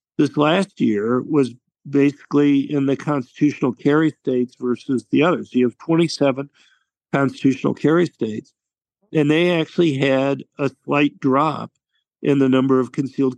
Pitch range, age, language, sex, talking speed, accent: 125-150 Hz, 50-69, English, male, 140 wpm, American